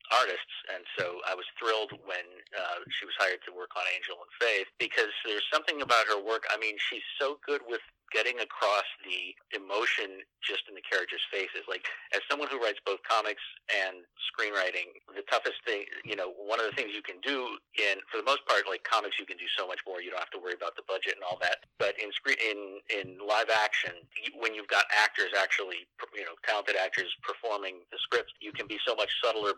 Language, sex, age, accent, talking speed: English, male, 40-59, American, 220 wpm